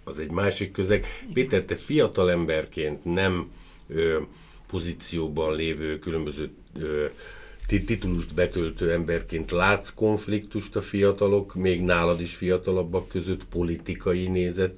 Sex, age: male, 50-69